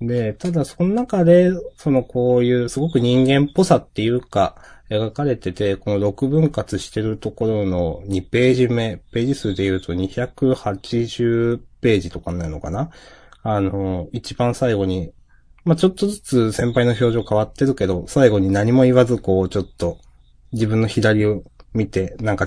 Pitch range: 95-125 Hz